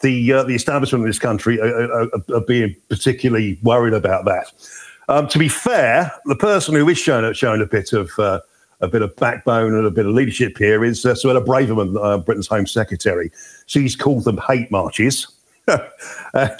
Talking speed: 190 wpm